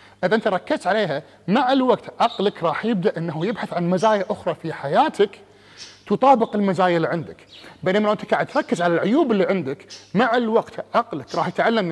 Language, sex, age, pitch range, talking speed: Arabic, male, 30-49, 160-220 Hz, 165 wpm